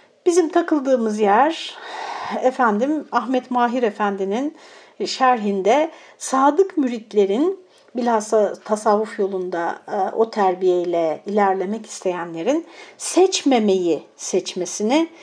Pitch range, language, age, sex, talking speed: 195-260 Hz, Turkish, 60-79, female, 75 wpm